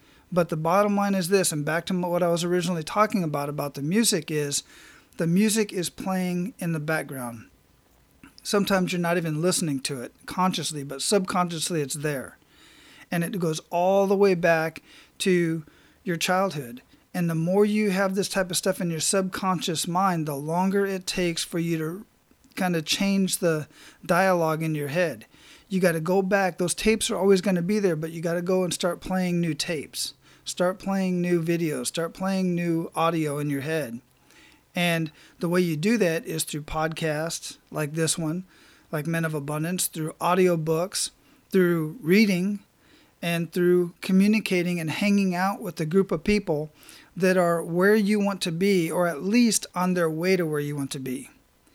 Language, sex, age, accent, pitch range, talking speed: English, male, 40-59, American, 160-190 Hz, 185 wpm